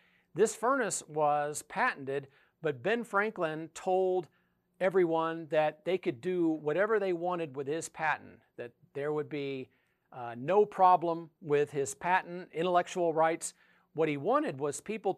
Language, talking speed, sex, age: English, 140 wpm, male, 40-59